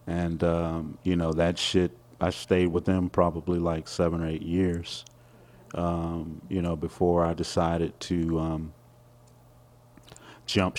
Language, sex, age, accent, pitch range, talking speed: English, male, 30-49, American, 80-110 Hz, 140 wpm